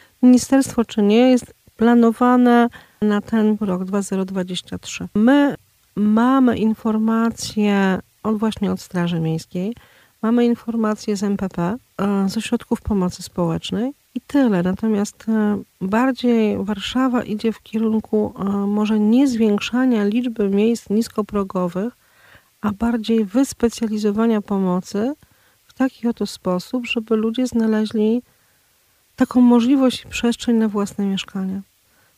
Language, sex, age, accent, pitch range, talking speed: Polish, female, 40-59, native, 195-235 Hz, 105 wpm